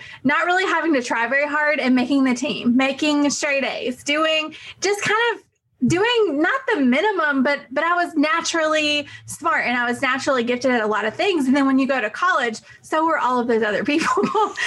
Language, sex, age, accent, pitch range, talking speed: English, female, 20-39, American, 240-295 Hz, 215 wpm